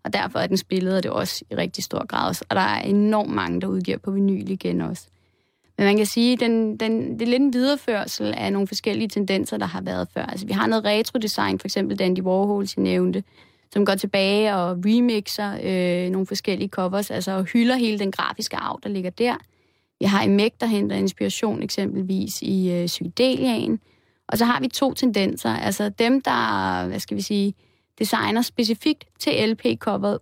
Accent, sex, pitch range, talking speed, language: native, female, 185-230 Hz, 195 wpm, Danish